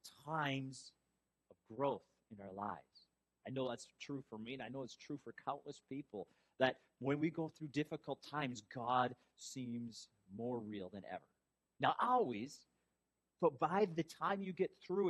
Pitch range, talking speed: 105-140 Hz, 165 wpm